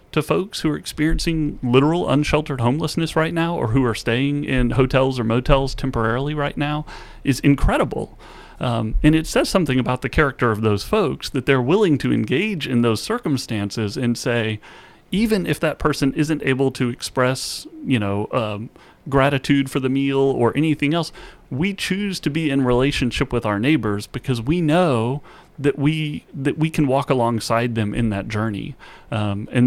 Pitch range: 120-155 Hz